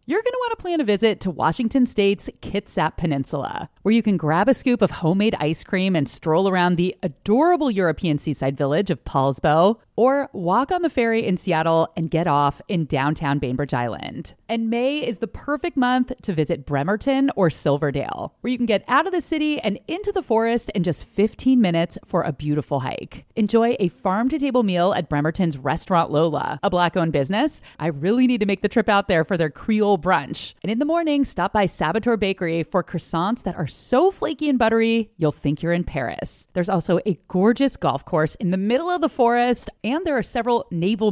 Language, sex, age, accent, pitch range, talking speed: English, female, 30-49, American, 160-235 Hz, 205 wpm